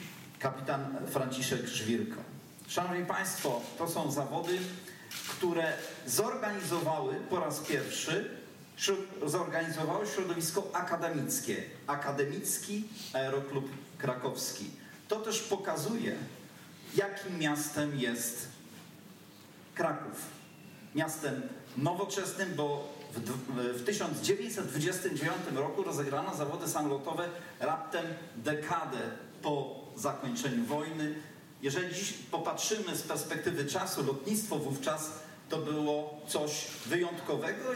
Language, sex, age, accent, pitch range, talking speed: Polish, male, 40-59, native, 140-185 Hz, 80 wpm